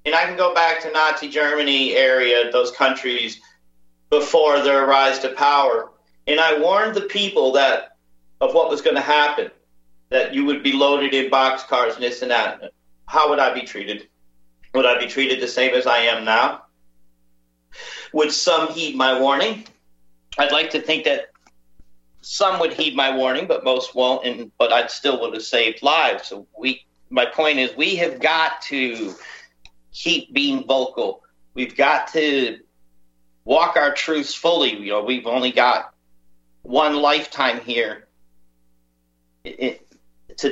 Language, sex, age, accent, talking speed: English, male, 50-69, American, 160 wpm